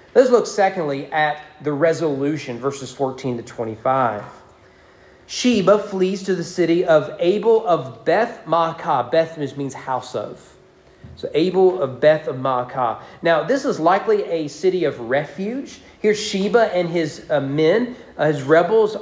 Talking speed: 145 wpm